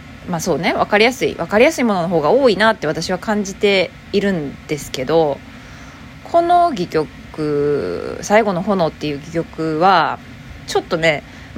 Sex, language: female, Japanese